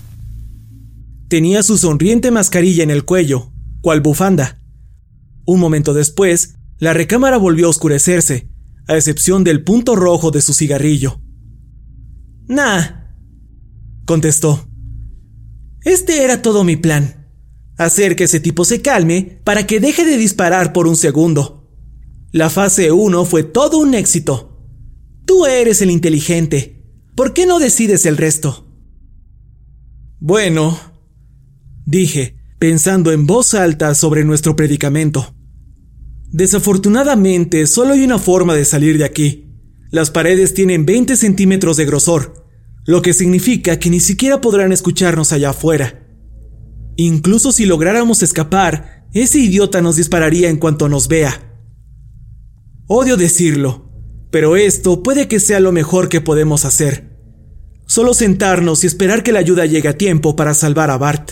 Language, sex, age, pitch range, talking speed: Spanish, male, 30-49, 135-185 Hz, 135 wpm